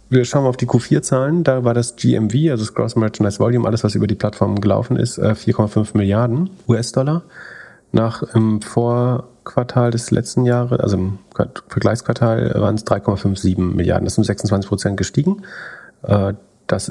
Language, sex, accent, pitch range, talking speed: German, male, German, 100-120 Hz, 160 wpm